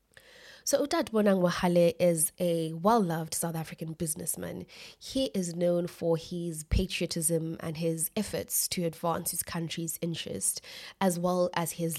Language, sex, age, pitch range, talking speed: English, female, 20-39, 165-190 Hz, 140 wpm